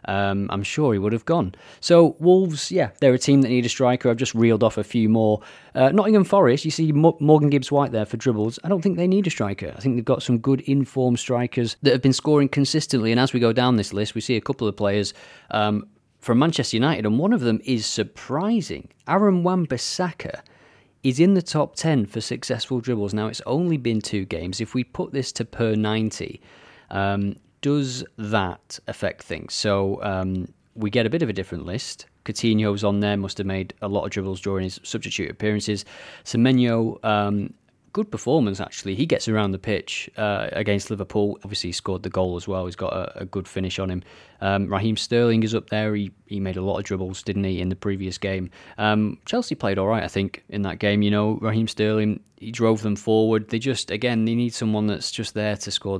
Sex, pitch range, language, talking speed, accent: male, 100-125 Hz, English, 220 wpm, British